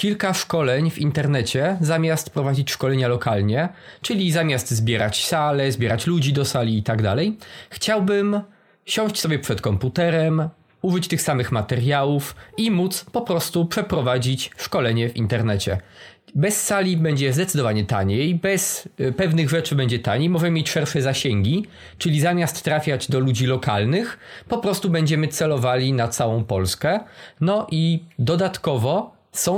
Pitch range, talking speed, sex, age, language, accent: 125-170 Hz, 135 wpm, male, 20-39, Polish, native